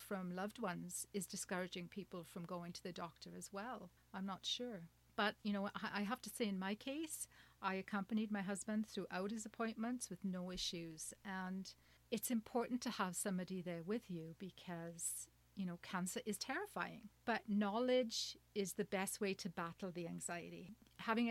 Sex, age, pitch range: female, 40-59, 180-215 Hz